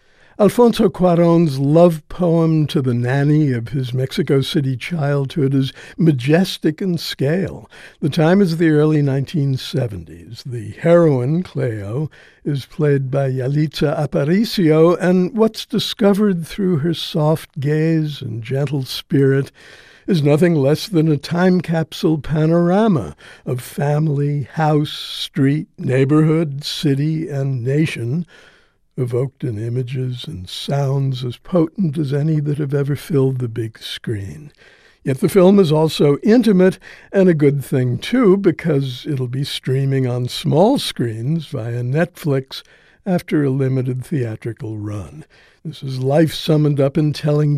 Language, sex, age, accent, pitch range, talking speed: English, male, 60-79, American, 130-165 Hz, 130 wpm